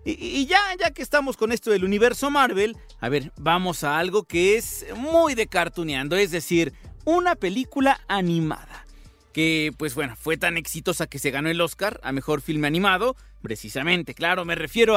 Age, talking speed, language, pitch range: 40-59, 175 wpm, Spanish, 155-235 Hz